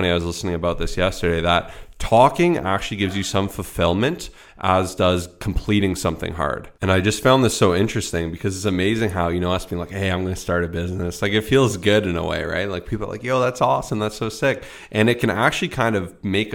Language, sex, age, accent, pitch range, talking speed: English, male, 30-49, American, 85-105 Hz, 230 wpm